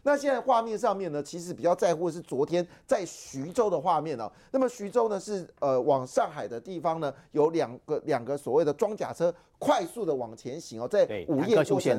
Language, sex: Chinese, male